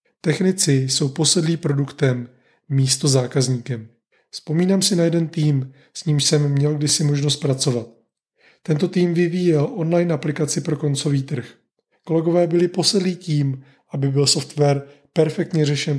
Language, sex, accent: Czech, male, native